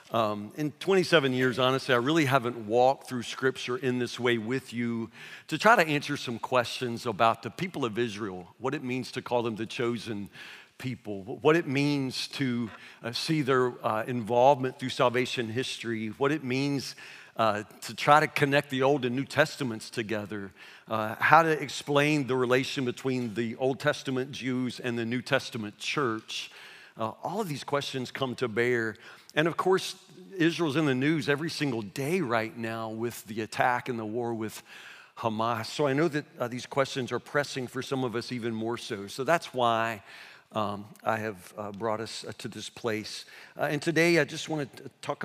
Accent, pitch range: American, 115-140 Hz